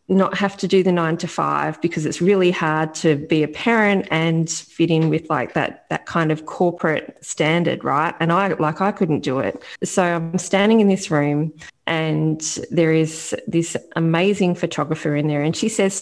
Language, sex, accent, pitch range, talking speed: English, female, Australian, 155-185 Hz, 195 wpm